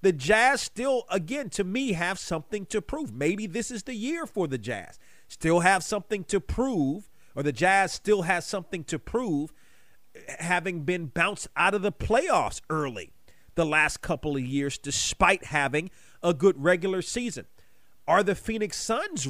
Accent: American